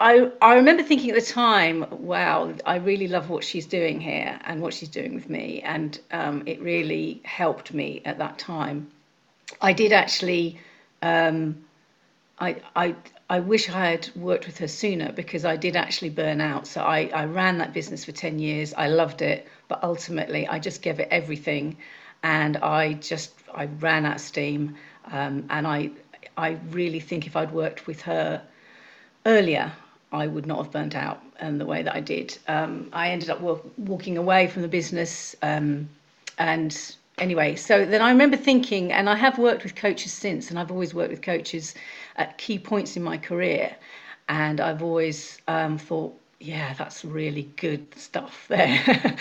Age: 40-59